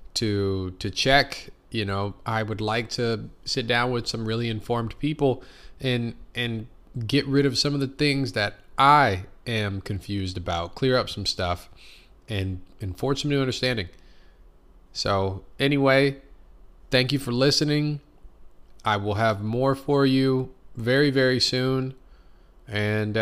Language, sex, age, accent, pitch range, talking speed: English, male, 20-39, American, 100-130 Hz, 145 wpm